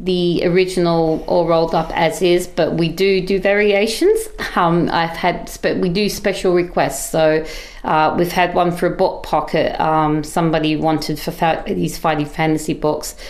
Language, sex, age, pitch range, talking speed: English, female, 40-59, 150-170 Hz, 165 wpm